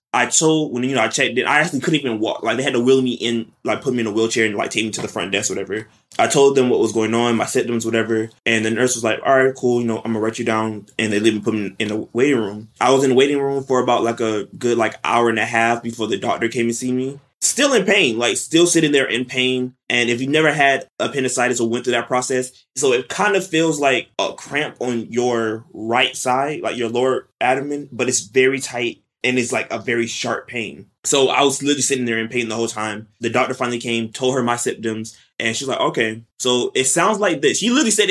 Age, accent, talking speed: 20-39, American, 270 wpm